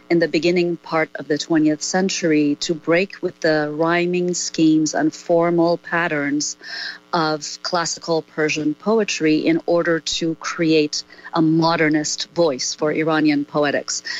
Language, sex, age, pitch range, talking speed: English, female, 40-59, 155-185 Hz, 130 wpm